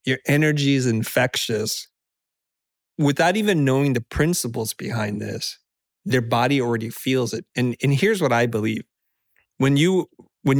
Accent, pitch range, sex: American, 120-145 Hz, male